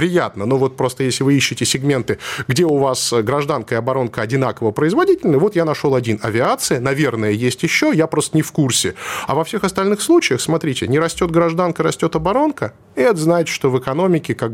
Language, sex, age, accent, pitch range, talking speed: Russian, male, 20-39, native, 115-155 Hz, 195 wpm